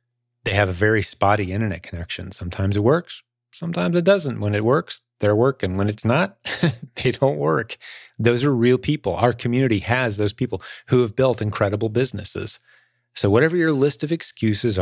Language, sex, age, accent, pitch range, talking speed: English, male, 30-49, American, 95-120 Hz, 180 wpm